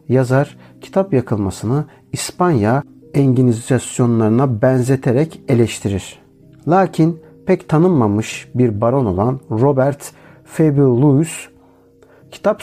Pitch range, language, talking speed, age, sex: 115-150 Hz, Turkish, 80 wpm, 50-69, male